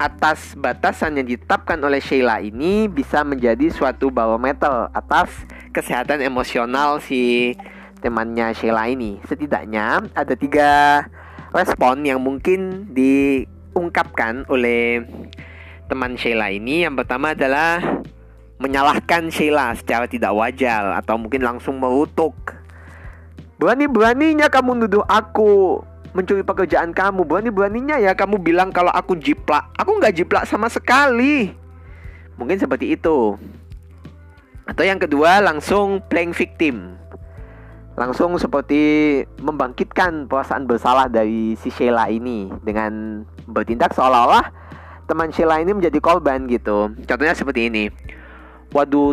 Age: 20-39